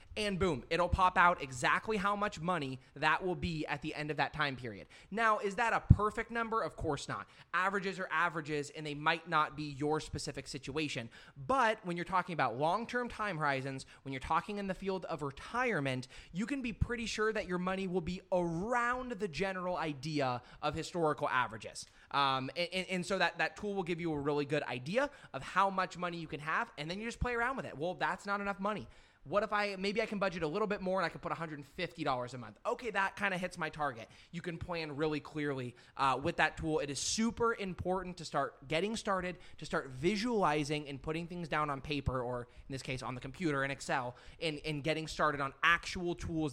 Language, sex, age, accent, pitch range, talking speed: English, male, 20-39, American, 145-190 Hz, 225 wpm